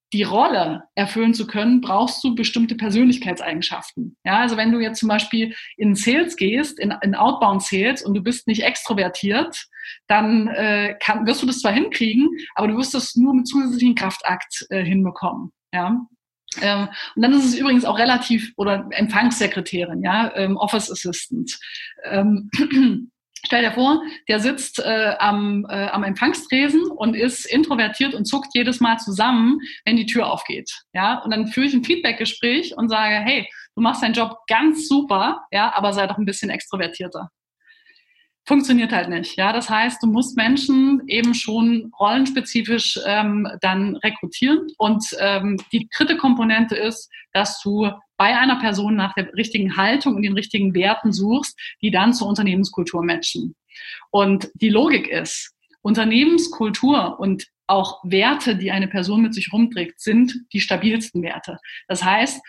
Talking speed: 160 wpm